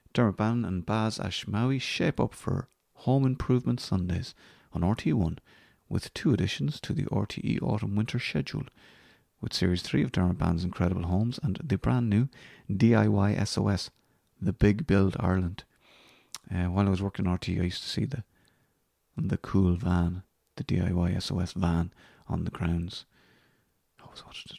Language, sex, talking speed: English, male, 165 wpm